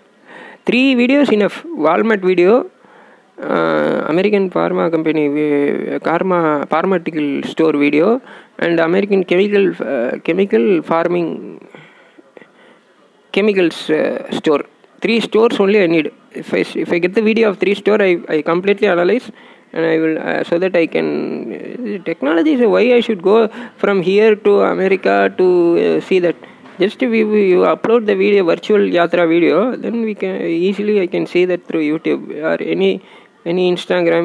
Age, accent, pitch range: 20-39, native, 165-205 Hz